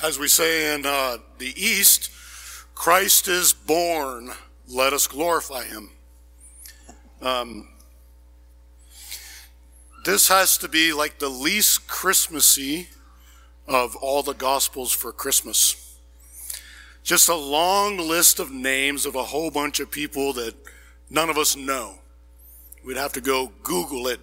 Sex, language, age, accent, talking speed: male, English, 50-69, American, 130 wpm